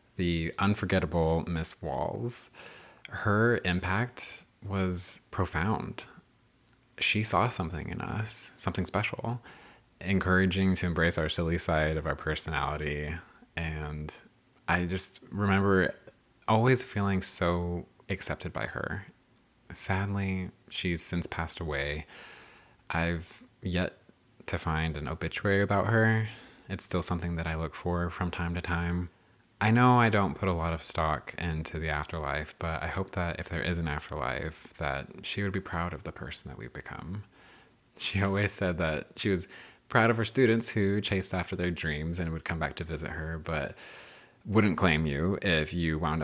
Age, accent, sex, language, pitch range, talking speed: 20-39, American, male, English, 80-100 Hz, 155 wpm